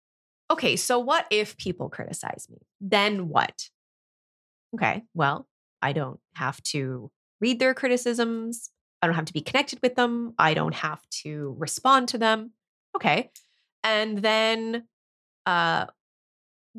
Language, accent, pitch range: English, American, 165-235 Hz